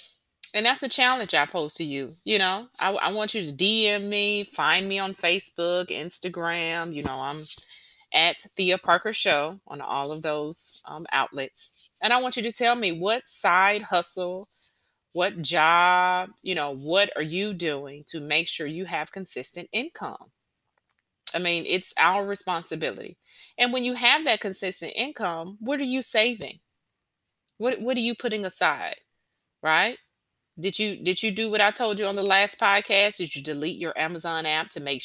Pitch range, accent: 160-205 Hz, American